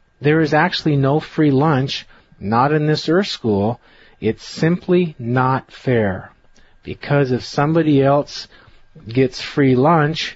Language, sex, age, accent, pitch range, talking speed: English, male, 40-59, American, 125-155 Hz, 125 wpm